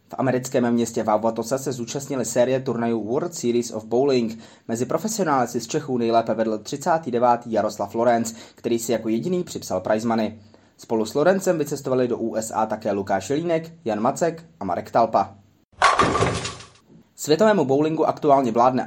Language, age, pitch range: Czech, 20-39, 115-145 Hz